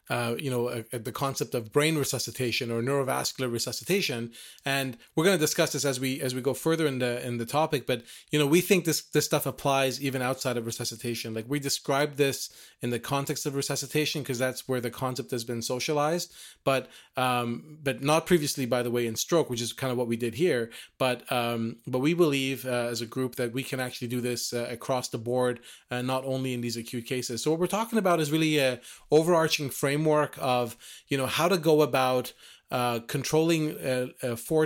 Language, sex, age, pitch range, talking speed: English, male, 30-49, 125-150 Hz, 220 wpm